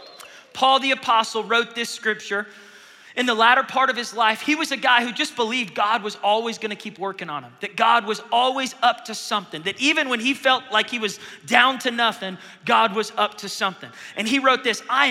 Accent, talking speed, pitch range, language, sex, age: American, 225 wpm, 180-235 Hz, English, male, 30-49